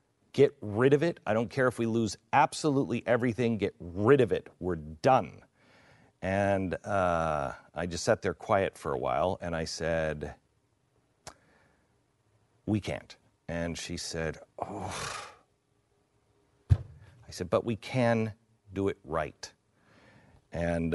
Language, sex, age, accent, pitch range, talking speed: English, male, 40-59, American, 100-125 Hz, 130 wpm